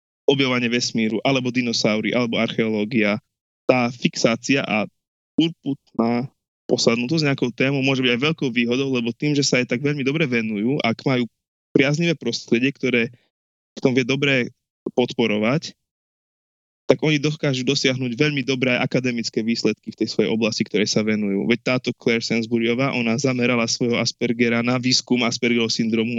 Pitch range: 110-135 Hz